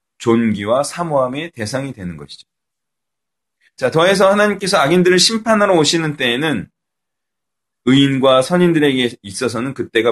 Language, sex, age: Korean, male, 30-49